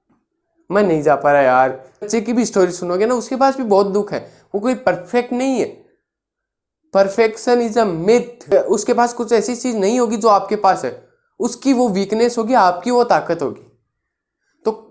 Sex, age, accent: male, 20-39, native